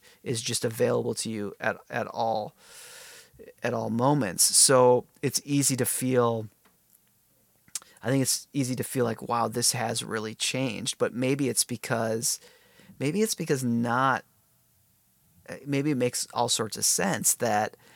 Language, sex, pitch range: English, male, 115-135 Hz